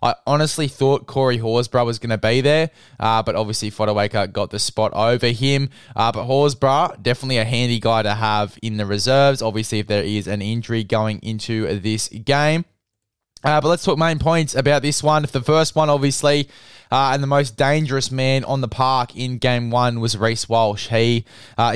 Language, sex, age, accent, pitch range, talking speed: English, male, 20-39, Australian, 115-135 Hz, 200 wpm